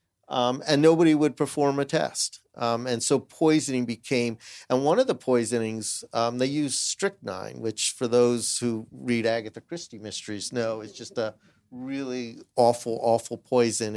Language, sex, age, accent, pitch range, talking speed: English, male, 40-59, American, 115-140 Hz, 160 wpm